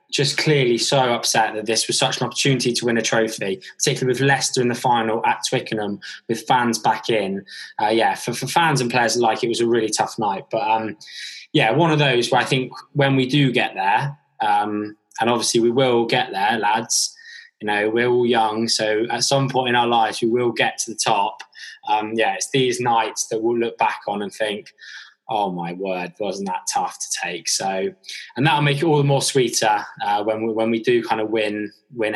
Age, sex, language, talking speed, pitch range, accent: 20-39, male, English, 220 wpm, 110-135 Hz, British